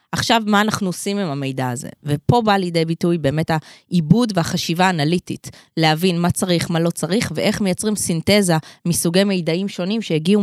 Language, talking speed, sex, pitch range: Hebrew, 160 wpm, female, 165-205 Hz